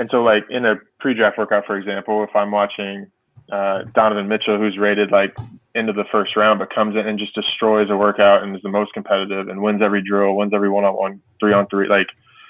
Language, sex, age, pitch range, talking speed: English, male, 20-39, 100-110 Hz, 210 wpm